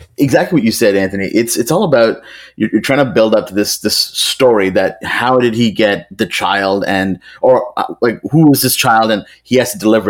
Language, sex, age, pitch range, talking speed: English, male, 30-49, 95-115 Hz, 230 wpm